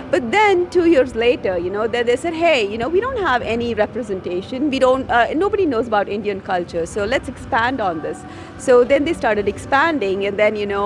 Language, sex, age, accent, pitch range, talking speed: English, female, 50-69, Indian, 205-275 Hz, 220 wpm